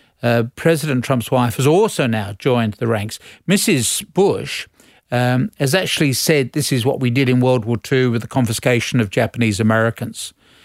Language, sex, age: English, male, 50-69